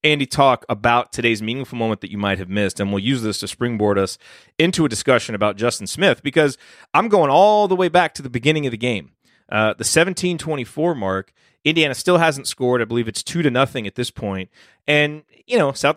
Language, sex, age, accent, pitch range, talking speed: English, male, 30-49, American, 115-155 Hz, 220 wpm